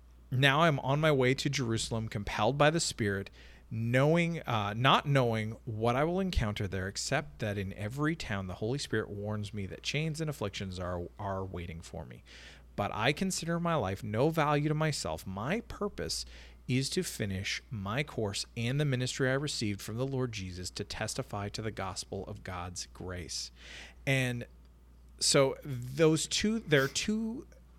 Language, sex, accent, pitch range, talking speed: English, male, American, 90-135 Hz, 170 wpm